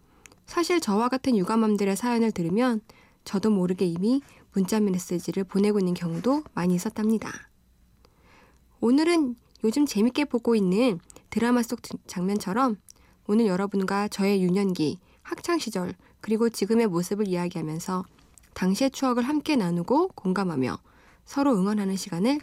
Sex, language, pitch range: female, Korean, 185-255 Hz